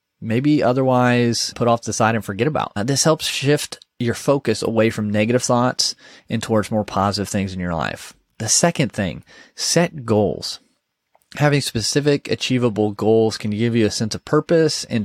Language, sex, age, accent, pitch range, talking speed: English, male, 30-49, American, 105-125 Hz, 175 wpm